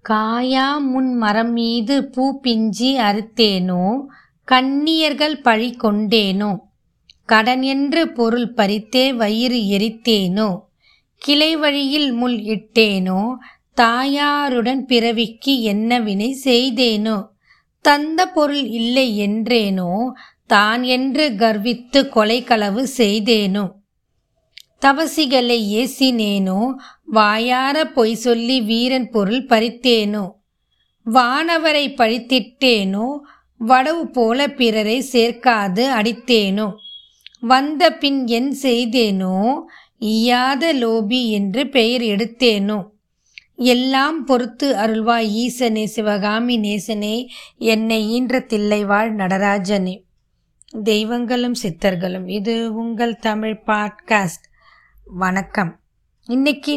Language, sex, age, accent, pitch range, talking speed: Tamil, female, 20-39, native, 210-260 Hz, 80 wpm